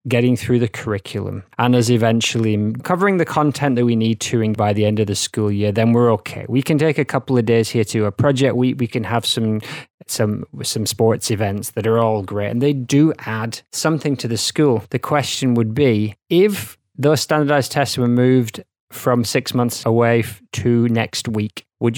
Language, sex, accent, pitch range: English, male, British, 110-135 Hz